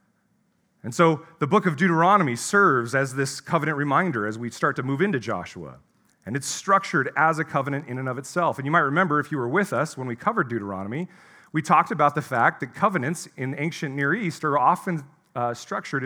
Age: 40-59